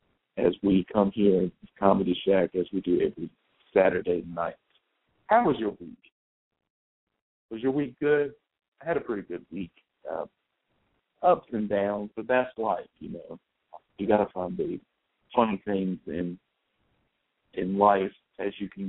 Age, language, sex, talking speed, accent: 50-69, English, male, 155 wpm, American